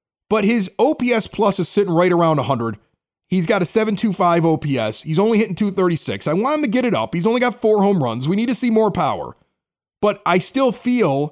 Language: English